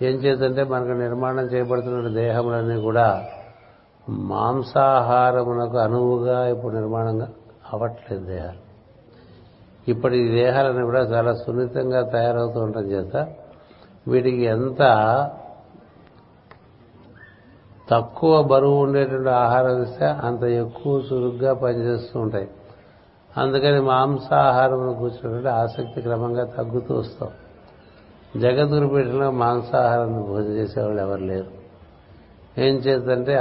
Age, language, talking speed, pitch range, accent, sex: 60-79, Telugu, 90 wpm, 110-130 Hz, native, male